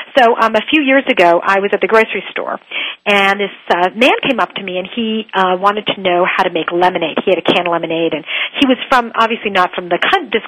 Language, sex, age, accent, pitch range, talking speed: English, female, 50-69, American, 180-255 Hz, 250 wpm